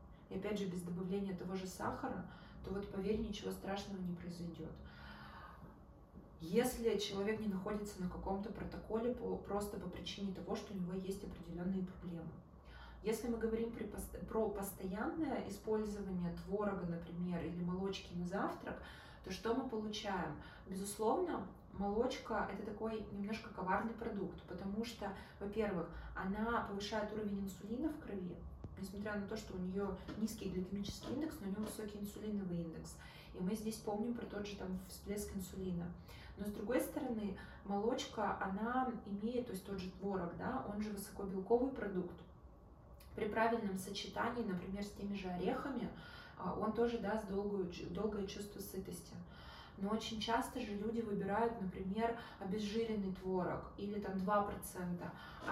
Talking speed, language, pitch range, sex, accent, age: 145 wpm, Russian, 185-220 Hz, female, native, 20-39